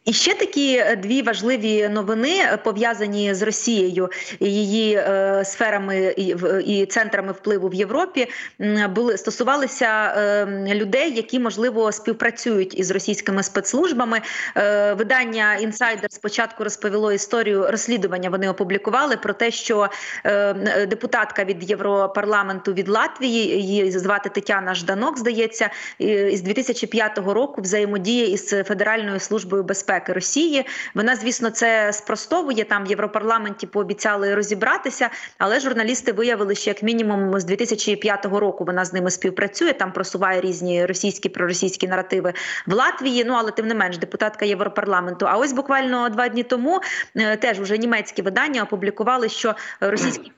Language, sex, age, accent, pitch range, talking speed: Ukrainian, female, 30-49, native, 200-235 Hz, 125 wpm